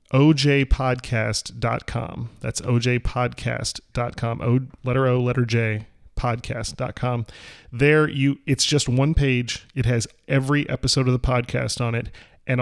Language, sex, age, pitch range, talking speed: English, male, 30-49, 115-140 Hz, 120 wpm